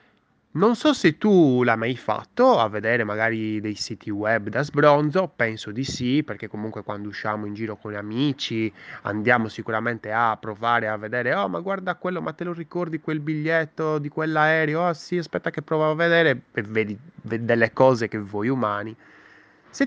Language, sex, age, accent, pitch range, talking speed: Italian, male, 20-39, native, 110-165 Hz, 185 wpm